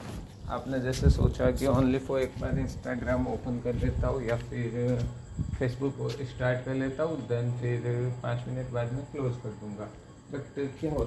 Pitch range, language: 115-135 Hz, Hindi